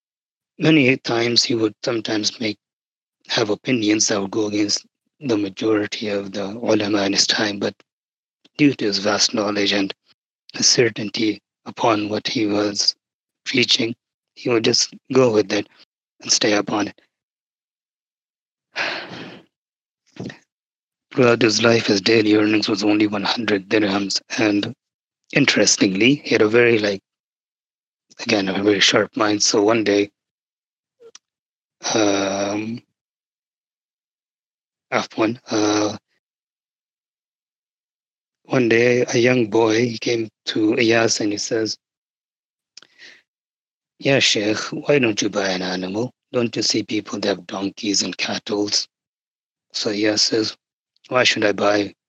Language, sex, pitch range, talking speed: English, male, 100-115 Hz, 125 wpm